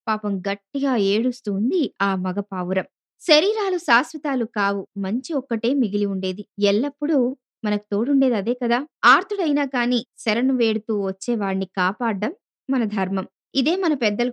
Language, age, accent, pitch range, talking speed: Telugu, 20-39, native, 200-265 Hz, 120 wpm